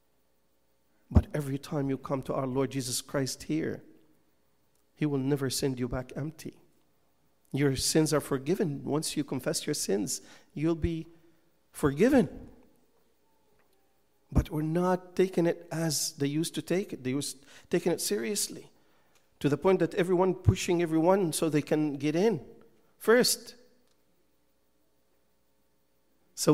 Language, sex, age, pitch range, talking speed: English, male, 50-69, 135-180 Hz, 135 wpm